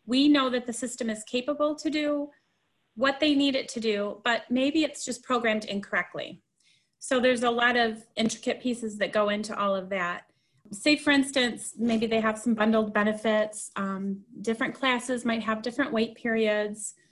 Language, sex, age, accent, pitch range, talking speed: English, female, 30-49, American, 215-260 Hz, 180 wpm